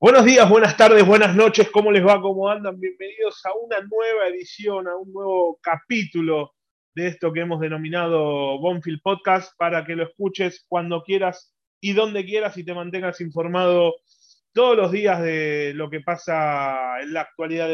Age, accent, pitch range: 20-39, Argentinian, 160-195 Hz